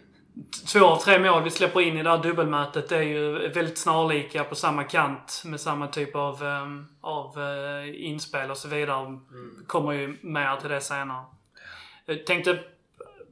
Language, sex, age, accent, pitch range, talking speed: Swedish, male, 20-39, native, 145-170 Hz, 165 wpm